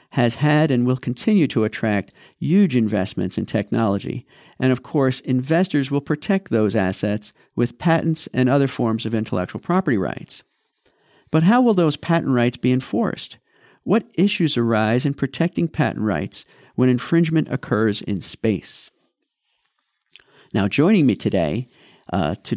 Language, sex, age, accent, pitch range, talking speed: English, male, 50-69, American, 115-150 Hz, 145 wpm